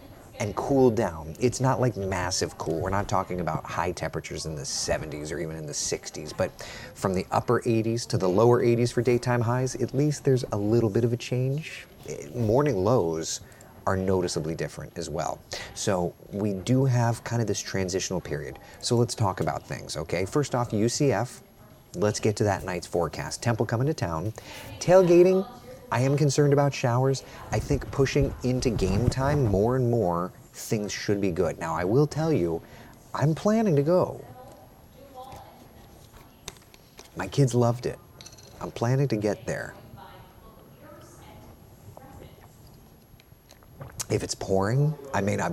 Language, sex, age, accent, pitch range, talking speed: English, male, 30-49, American, 95-130 Hz, 160 wpm